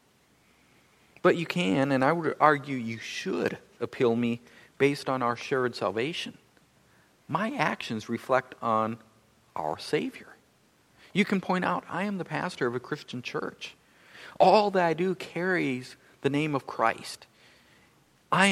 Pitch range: 135-180 Hz